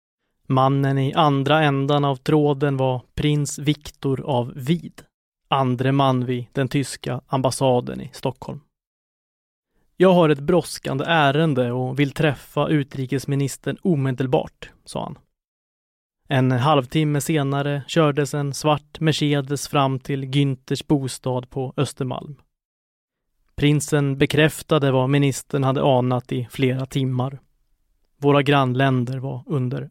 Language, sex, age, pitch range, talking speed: Swedish, male, 30-49, 130-150 Hz, 115 wpm